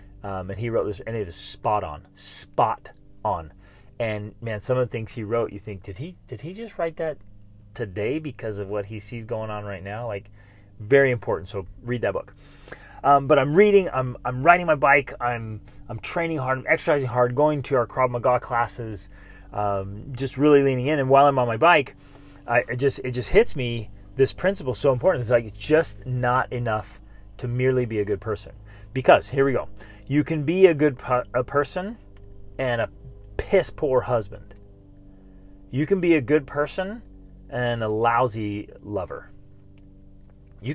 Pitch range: 105-140 Hz